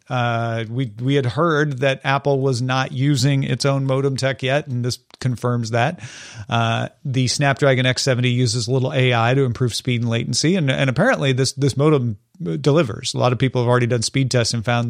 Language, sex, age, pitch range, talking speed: English, male, 40-59, 120-155 Hz, 200 wpm